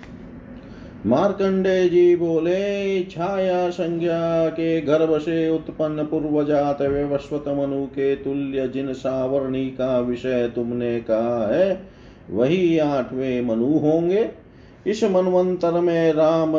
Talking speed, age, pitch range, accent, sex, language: 100 wpm, 40-59, 135-170 Hz, native, male, Hindi